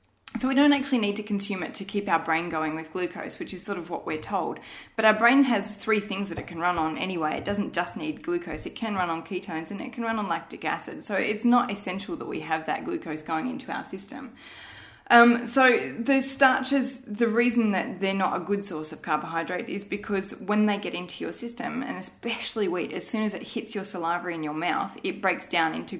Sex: female